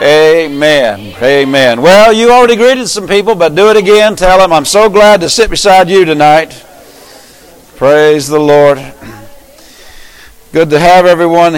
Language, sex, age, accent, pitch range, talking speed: English, male, 50-69, American, 145-180 Hz, 150 wpm